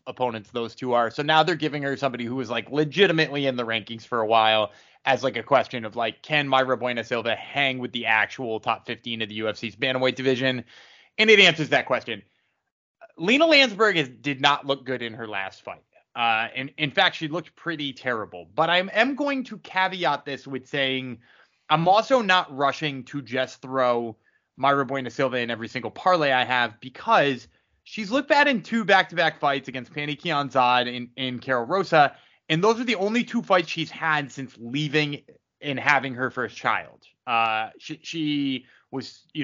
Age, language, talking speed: 20-39, English, 195 wpm